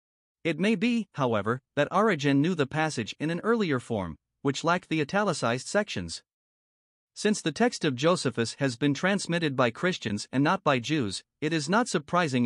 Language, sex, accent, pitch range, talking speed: English, male, American, 130-175 Hz, 175 wpm